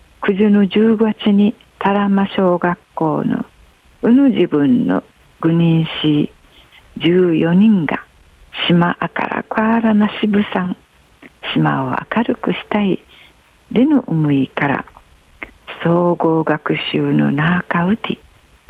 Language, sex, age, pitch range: Japanese, female, 60-79, 145-205 Hz